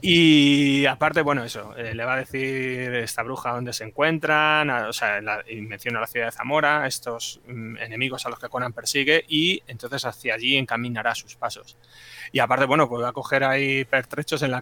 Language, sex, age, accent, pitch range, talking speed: Spanish, male, 20-39, Spanish, 125-150 Hz, 205 wpm